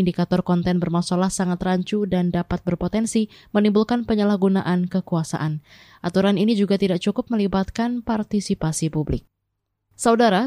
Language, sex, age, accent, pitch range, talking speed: Indonesian, female, 20-39, native, 175-200 Hz, 115 wpm